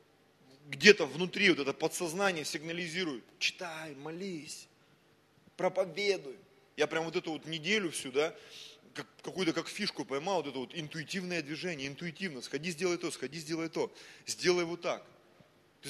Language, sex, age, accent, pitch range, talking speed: Russian, male, 20-39, native, 160-215 Hz, 140 wpm